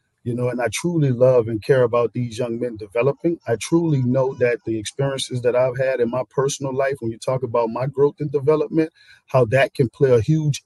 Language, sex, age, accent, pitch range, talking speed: English, male, 40-59, American, 125-150 Hz, 225 wpm